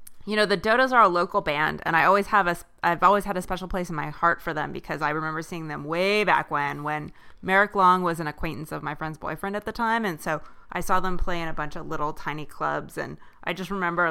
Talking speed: 265 wpm